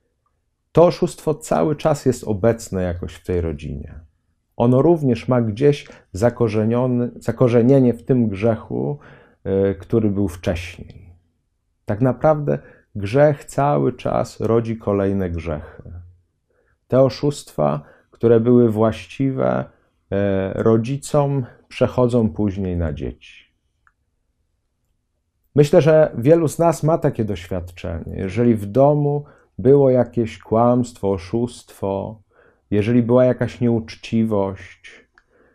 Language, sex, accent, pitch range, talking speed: Polish, male, native, 95-130 Hz, 100 wpm